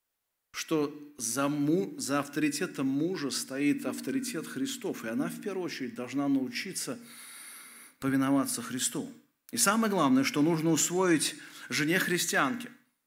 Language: Russian